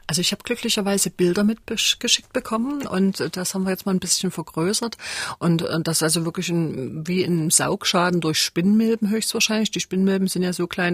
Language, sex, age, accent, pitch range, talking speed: German, female, 40-59, German, 160-190 Hz, 190 wpm